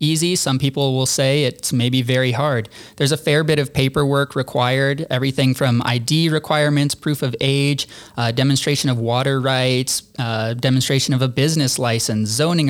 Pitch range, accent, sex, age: 125-145 Hz, American, male, 20-39